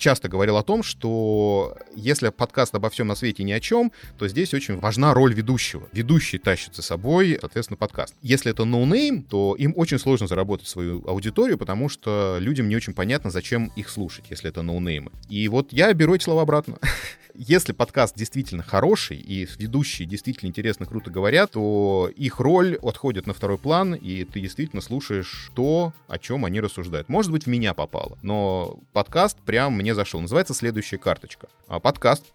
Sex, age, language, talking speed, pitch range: male, 30-49, Russian, 175 wpm, 95-130 Hz